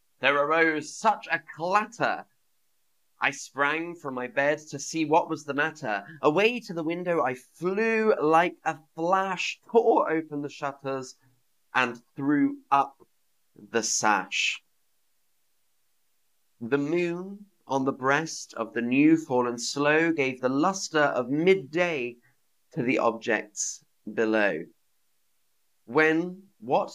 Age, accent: 30-49, British